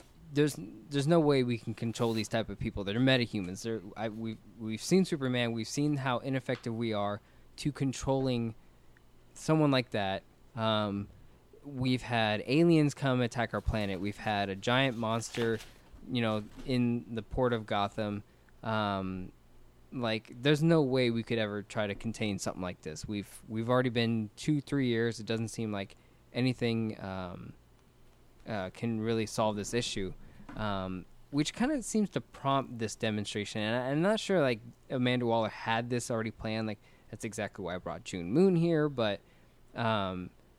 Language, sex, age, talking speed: English, male, 20-39, 175 wpm